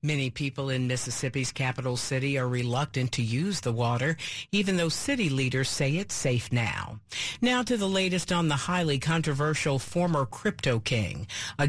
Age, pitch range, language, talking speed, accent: 50-69, 130-185 Hz, English, 165 wpm, American